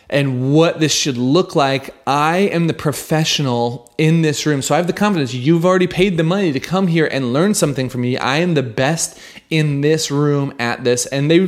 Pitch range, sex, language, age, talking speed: 115-165 Hz, male, English, 30-49, 220 wpm